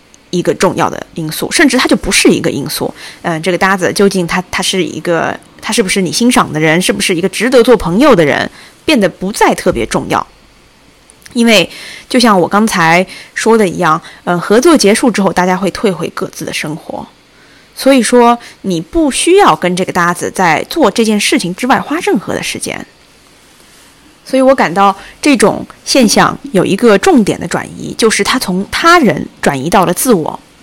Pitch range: 180-245 Hz